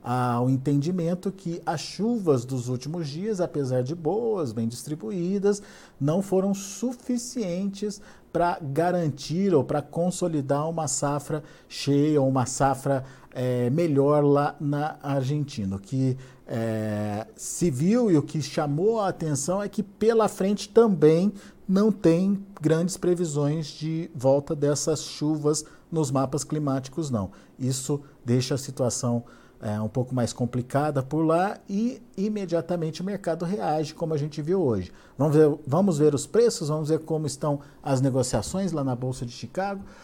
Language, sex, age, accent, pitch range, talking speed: Portuguese, male, 50-69, Brazilian, 135-180 Hz, 145 wpm